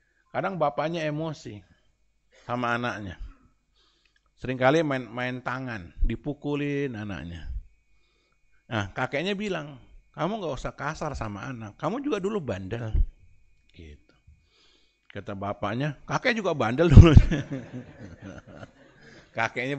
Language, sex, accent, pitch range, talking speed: Indonesian, male, native, 95-130 Hz, 95 wpm